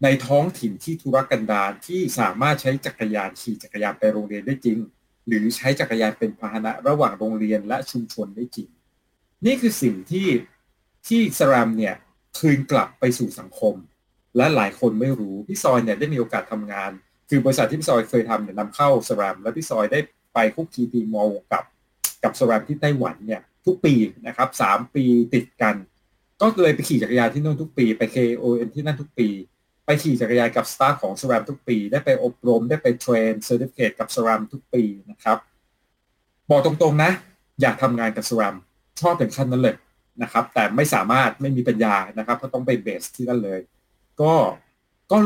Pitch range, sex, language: 110-150 Hz, male, Thai